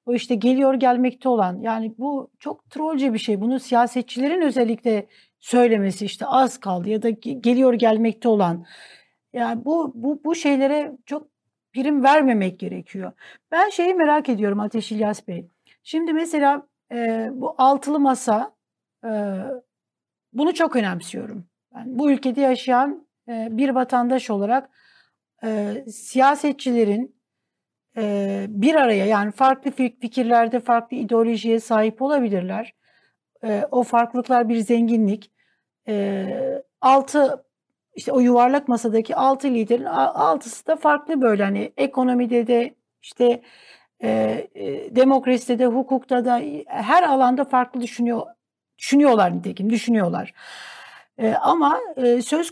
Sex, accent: female, native